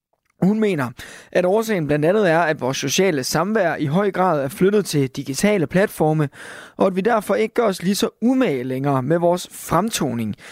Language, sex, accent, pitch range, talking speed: Danish, male, native, 150-200 Hz, 190 wpm